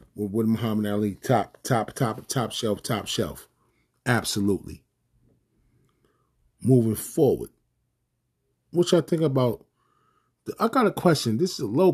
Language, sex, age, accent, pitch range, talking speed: English, male, 30-49, American, 115-150 Hz, 130 wpm